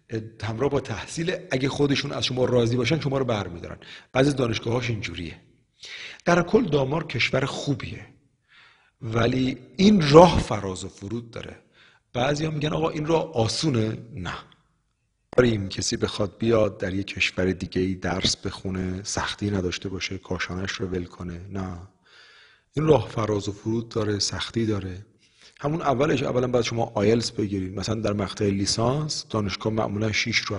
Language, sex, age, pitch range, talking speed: Persian, male, 40-59, 95-130 Hz, 150 wpm